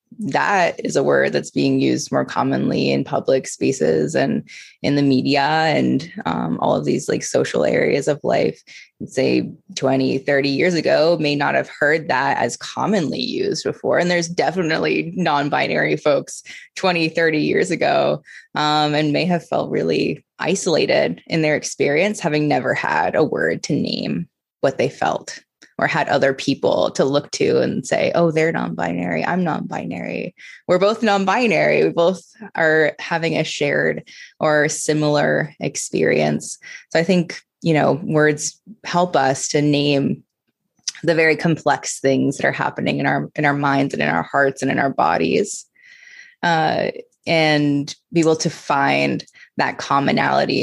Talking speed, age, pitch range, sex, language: 160 wpm, 20-39, 135-170 Hz, female, English